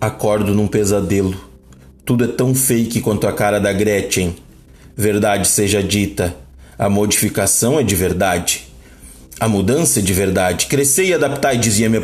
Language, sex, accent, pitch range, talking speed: Portuguese, male, Brazilian, 110-155 Hz, 155 wpm